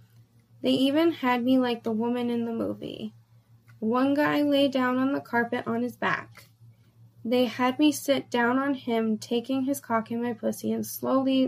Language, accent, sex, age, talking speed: English, American, female, 10-29, 185 wpm